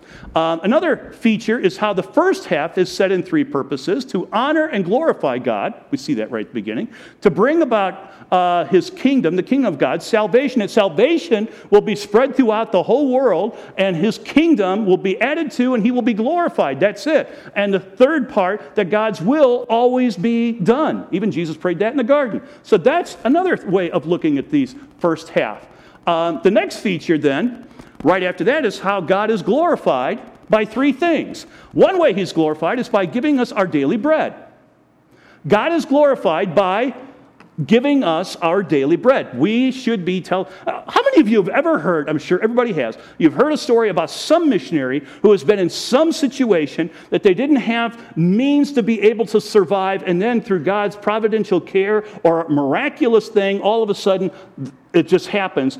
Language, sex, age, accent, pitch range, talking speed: English, male, 50-69, American, 185-260 Hz, 190 wpm